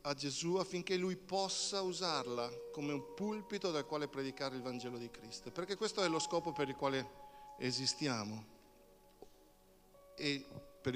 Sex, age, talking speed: male, 50-69, 150 wpm